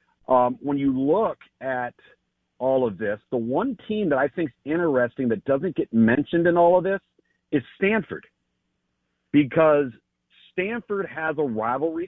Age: 50-69